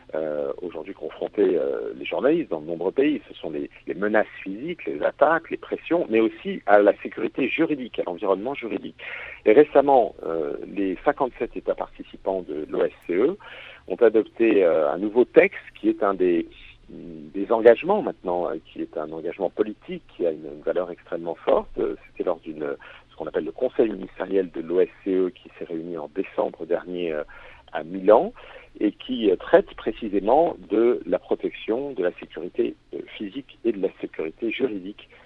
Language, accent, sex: French, French, male